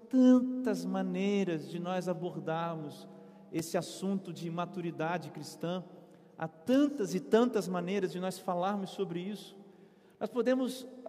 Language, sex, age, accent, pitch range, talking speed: Portuguese, male, 40-59, Brazilian, 140-190 Hz, 120 wpm